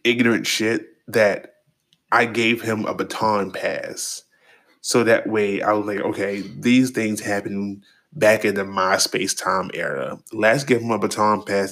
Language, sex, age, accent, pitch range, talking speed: English, male, 20-39, American, 95-115 Hz, 160 wpm